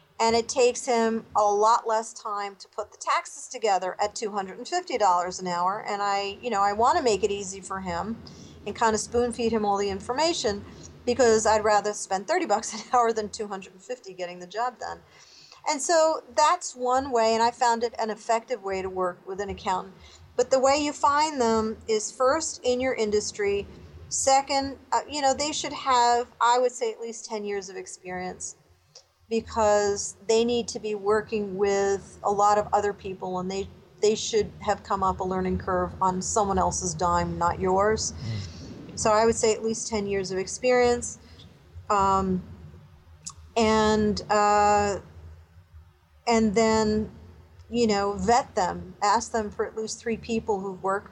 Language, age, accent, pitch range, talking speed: English, 40-59, American, 195-235 Hz, 180 wpm